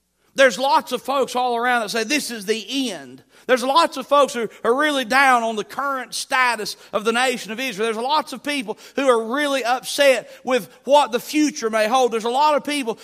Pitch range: 180-255 Hz